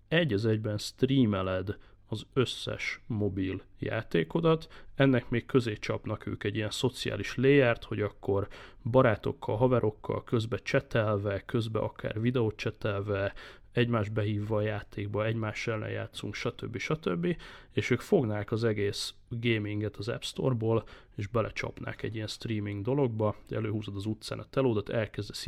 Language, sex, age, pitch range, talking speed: Hungarian, male, 30-49, 105-120 Hz, 135 wpm